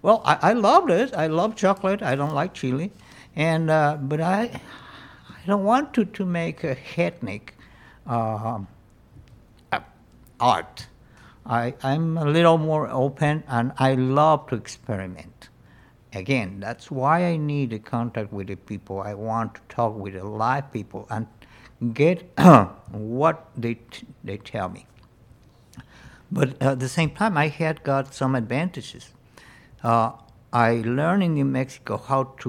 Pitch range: 110-145 Hz